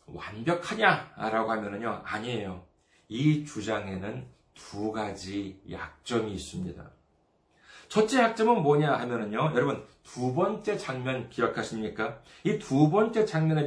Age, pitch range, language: 40-59, 125-195 Hz, Korean